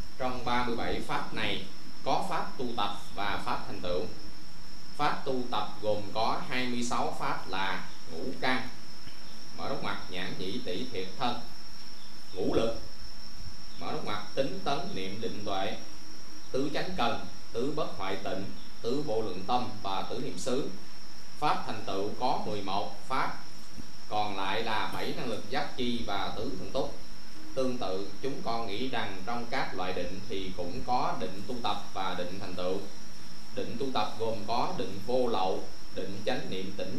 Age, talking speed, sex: 20-39, 170 wpm, male